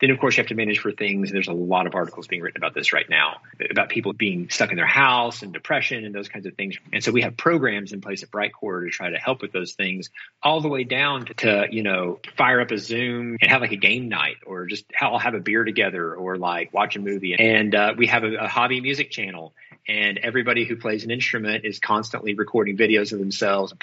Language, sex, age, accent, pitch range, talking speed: English, male, 30-49, American, 100-125 Hz, 260 wpm